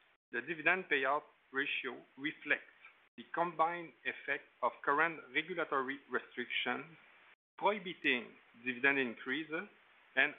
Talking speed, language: 90 wpm, English